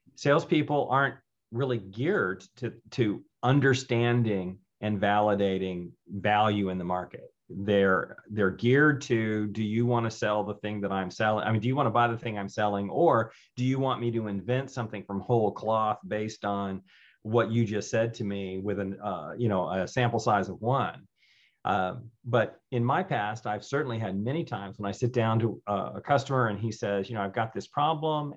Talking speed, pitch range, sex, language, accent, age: 200 wpm, 105-130 Hz, male, English, American, 40-59